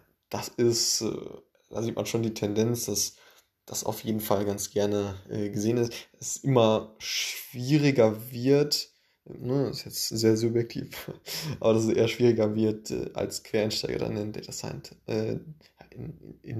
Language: German